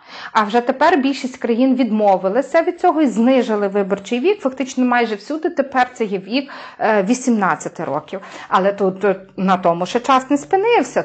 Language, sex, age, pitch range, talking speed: Ukrainian, female, 30-49, 215-275 Hz, 160 wpm